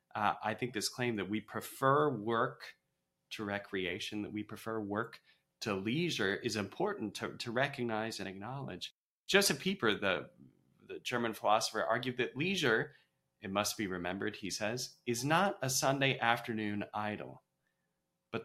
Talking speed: 150 wpm